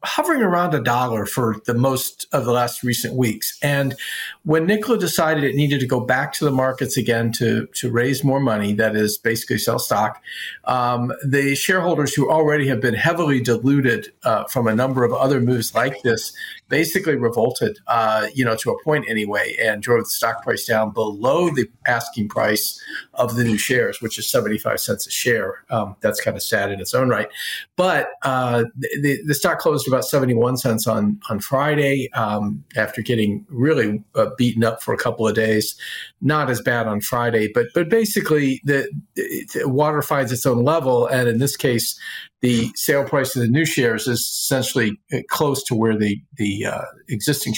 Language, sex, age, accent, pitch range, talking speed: English, male, 50-69, American, 115-145 Hz, 190 wpm